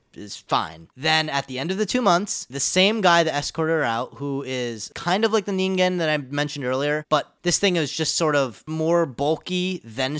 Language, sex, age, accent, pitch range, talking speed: English, male, 20-39, American, 120-160 Hz, 225 wpm